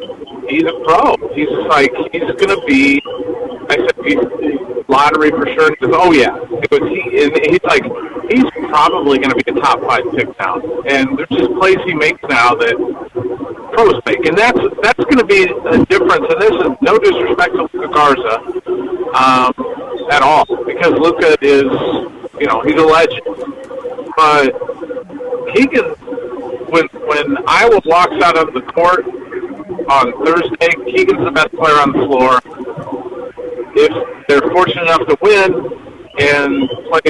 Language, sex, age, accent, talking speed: English, male, 50-69, American, 160 wpm